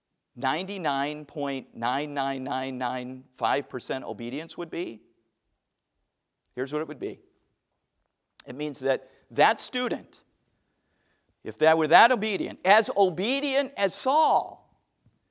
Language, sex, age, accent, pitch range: English, male, 50-69, American, 130-200 Hz